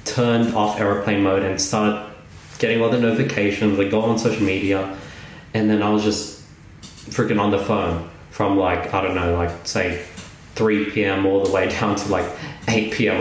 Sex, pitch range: male, 95-115 Hz